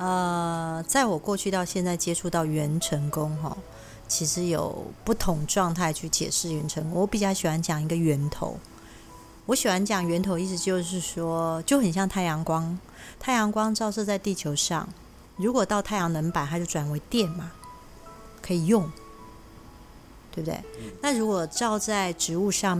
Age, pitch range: 30-49, 155-195 Hz